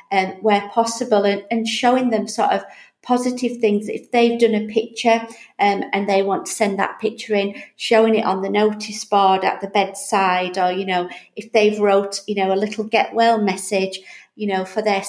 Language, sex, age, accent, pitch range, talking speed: English, female, 40-59, British, 195-225 Hz, 205 wpm